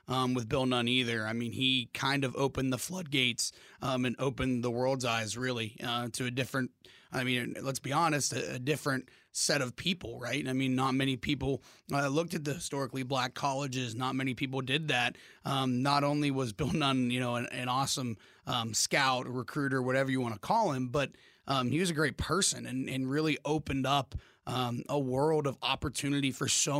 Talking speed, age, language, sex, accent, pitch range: 205 wpm, 30-49, English, male, American, 125-145 Hz